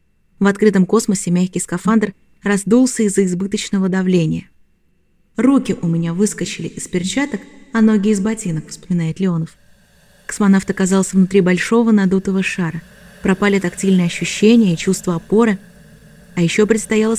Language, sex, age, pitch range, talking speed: Russian, female, 20-39, 185-220 Hz, 125 wpm